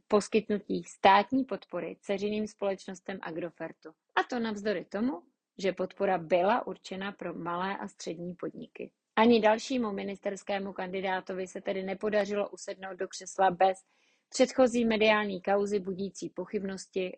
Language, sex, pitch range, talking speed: Czech, female, 190-225 Hz, 120 wpm